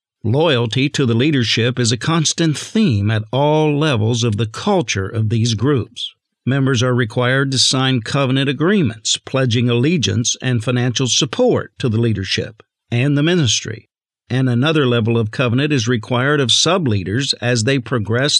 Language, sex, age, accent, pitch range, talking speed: English, male, 50-69, American, 115-140 Hz, 155 wpm